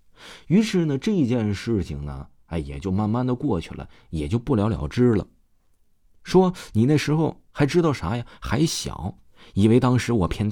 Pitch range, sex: 80-125 Hz, male